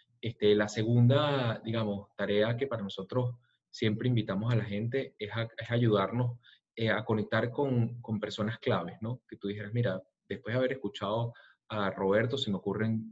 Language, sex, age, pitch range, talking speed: Spanish, male, 30-49, 100-120 Hz, 170 wpm